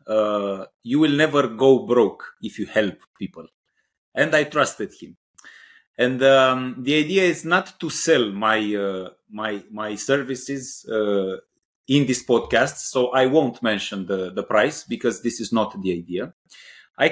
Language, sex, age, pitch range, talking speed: English, male, 30-49, 115-150 Hz, 160 wpm